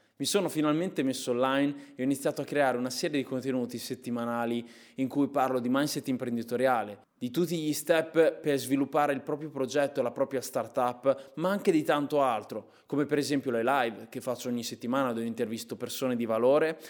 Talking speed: 190 wpm